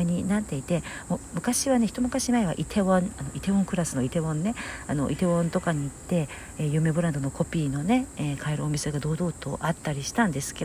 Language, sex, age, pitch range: Japanese, female, 50-69, 140-180 Hz